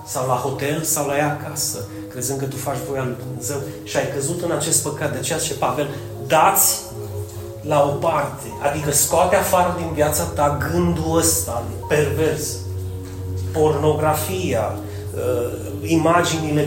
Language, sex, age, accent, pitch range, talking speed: Romanian, male, 30-49, native, 115-175 Hz, 140 wpm